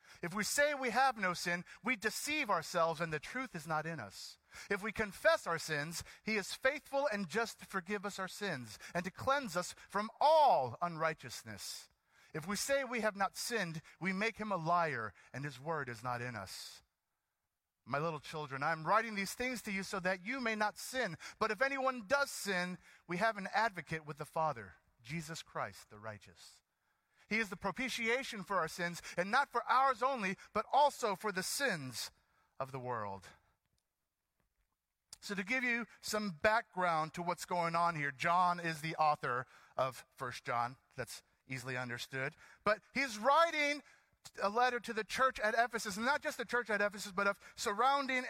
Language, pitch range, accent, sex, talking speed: English, 155-225 Hz, American, male, 190 wpm